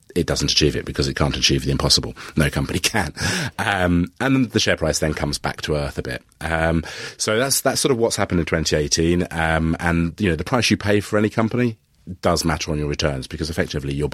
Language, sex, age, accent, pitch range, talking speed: English, male, 30-49, British, 75-90 Hz, 235 wpm